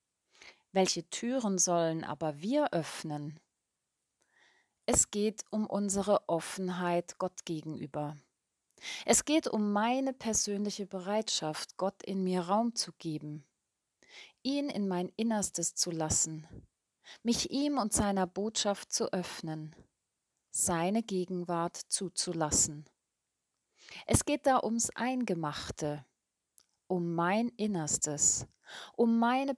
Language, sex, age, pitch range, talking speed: German, female, 30-49, 170-220 Hz, 105 wpm